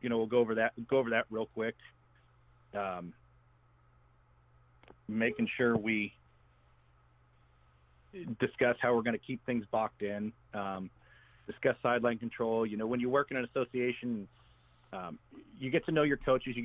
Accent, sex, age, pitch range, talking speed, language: American, male, 40-59, 105-120 Hz, 160 wpm, English